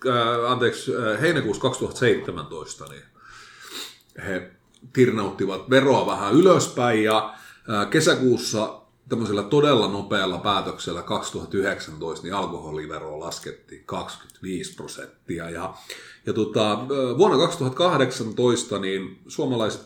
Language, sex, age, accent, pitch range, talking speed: Finnish, male, 30-49, native, 100-135 Hz, 85 wpm